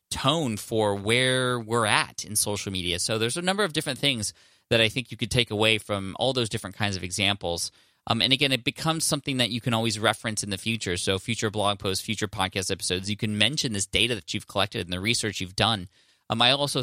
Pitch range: 100-120 Hz